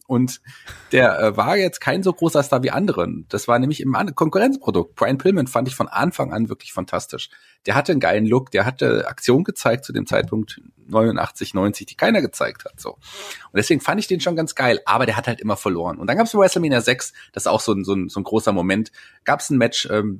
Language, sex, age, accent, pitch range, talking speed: German, male, 30-49, German, 100-130 Hz, 240 wpm